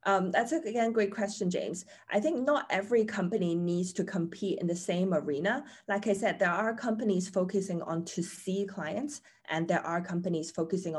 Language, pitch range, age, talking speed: English, 155-195 Hz, 20-39, 190 wpm